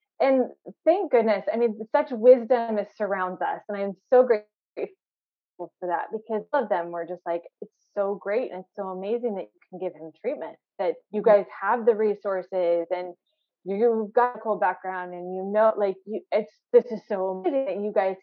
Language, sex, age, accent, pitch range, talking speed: English, female, 20-39, American, 190-240 Hz, 200 wpm